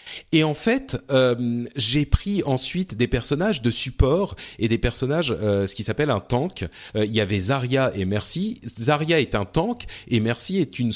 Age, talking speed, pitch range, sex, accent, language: 40-59, 190 wpm, 115-150 Hz, male, French, French